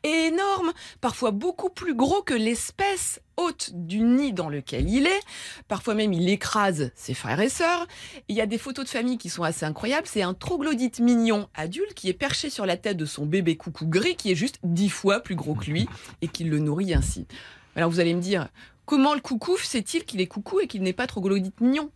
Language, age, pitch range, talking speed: French, 20-39, 165-250 Hz, 225 wpm